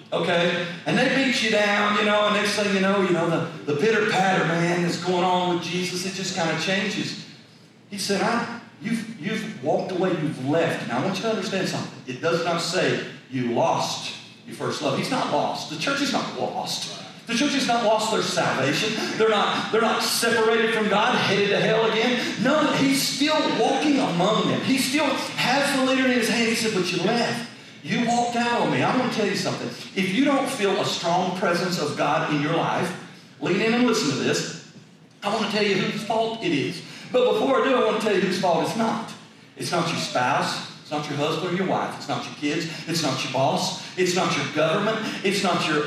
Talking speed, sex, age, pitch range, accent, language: 230 wpm, male, 40-59, 170-230 Hz, American, English